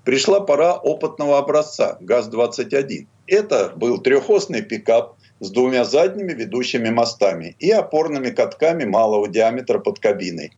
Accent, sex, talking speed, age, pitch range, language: native, male, 120 wpm, 50-69, 120-195 Hz, Russian